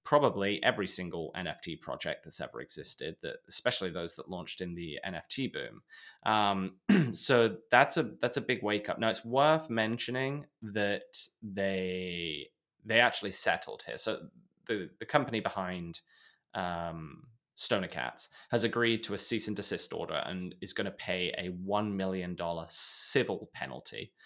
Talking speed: 155 wpm